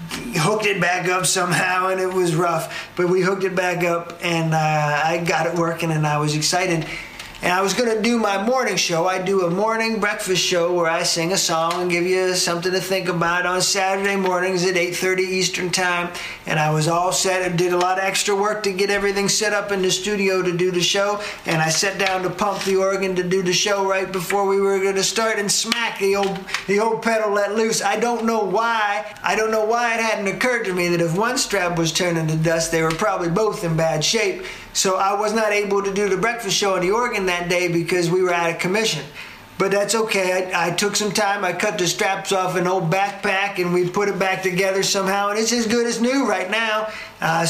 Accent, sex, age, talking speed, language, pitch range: American, male, 40-59, 240 wpm, English, 175-210 Hz